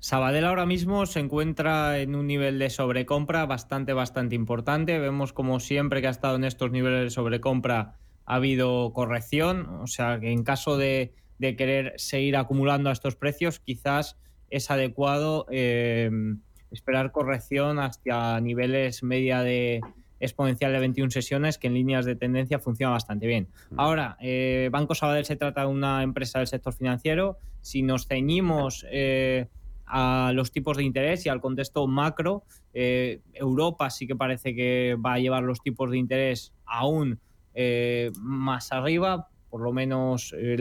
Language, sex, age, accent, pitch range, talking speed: Spanish, male, 20-39, Spanish, 125-145 Hz, 160 wpm